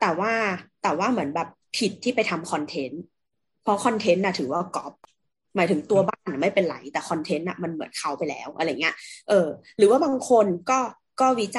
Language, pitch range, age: Thai, 175-225 Hz, 20-39